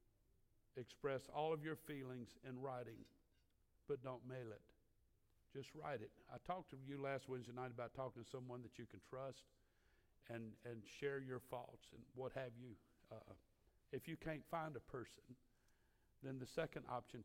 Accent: American